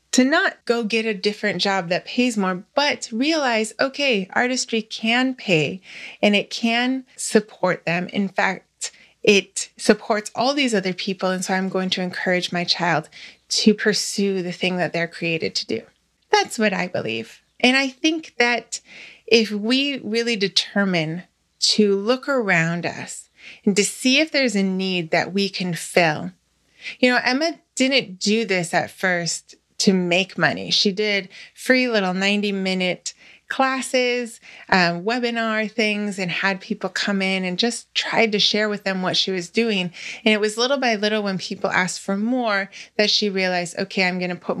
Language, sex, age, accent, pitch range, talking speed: English, female, 20-39, American, 185-240 Hz, 170 wpm